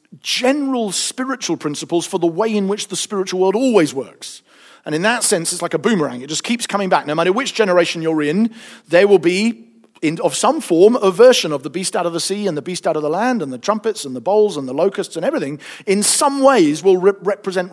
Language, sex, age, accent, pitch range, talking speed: English, male, 40-59, British, 155-225 Hz, 235 wpm